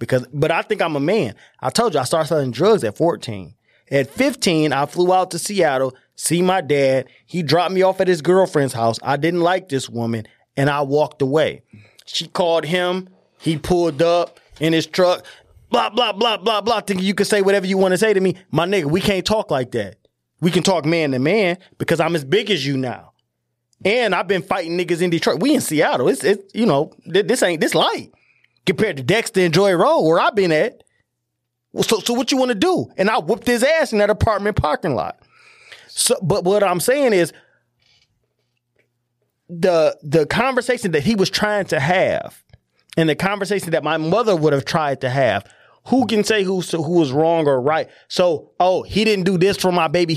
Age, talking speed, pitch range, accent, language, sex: 20-39, 215 wpm, 145-200 Hz, American, English, male